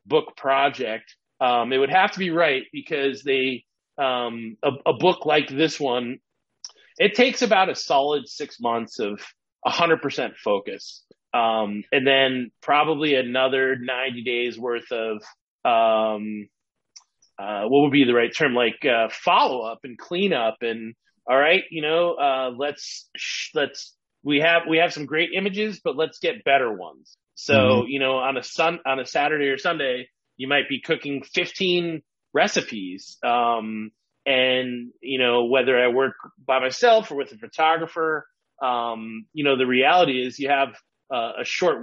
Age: 30-49